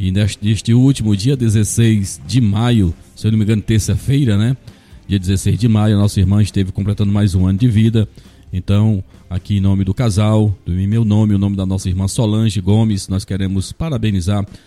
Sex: male